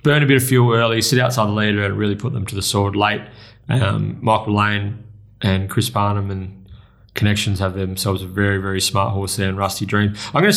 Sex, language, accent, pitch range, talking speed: male, English, Australian, 105-125 Hz, 225 wpm